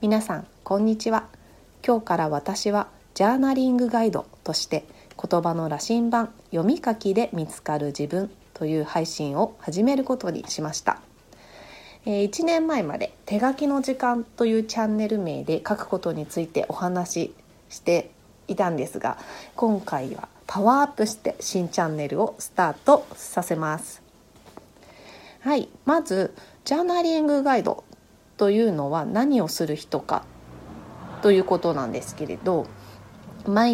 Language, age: Japanese, 40-59